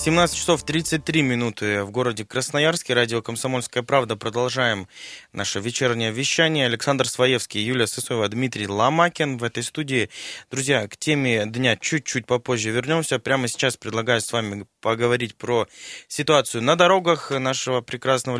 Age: 20-39